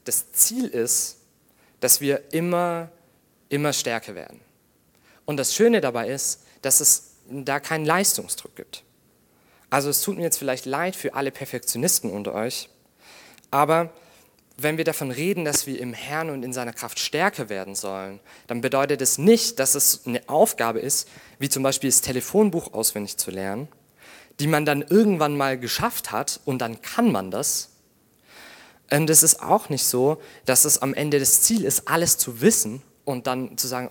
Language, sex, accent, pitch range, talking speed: German, male, German, 125-165 Hz, 170 wpm